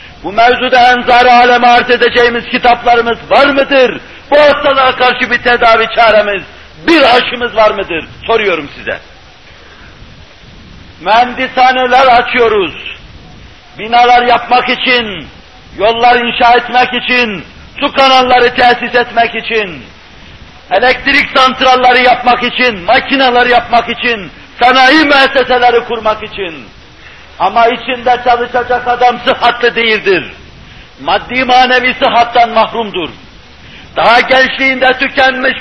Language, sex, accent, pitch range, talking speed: Turkish, male, native, 235-260 Hz, 100 wpm